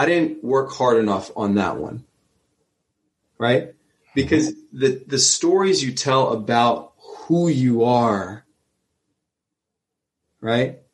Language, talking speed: English, 110 wpm